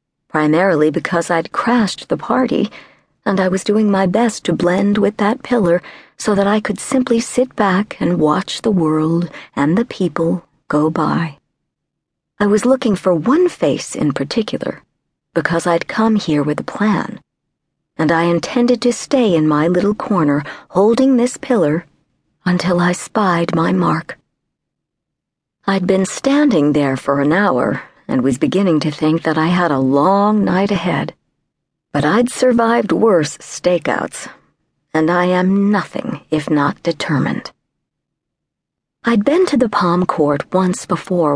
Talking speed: 150 wpm